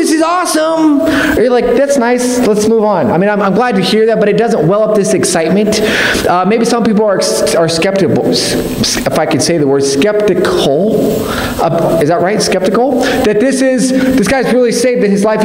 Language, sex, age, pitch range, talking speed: English, male, 30-49, 200-250 Hz, 200 wpm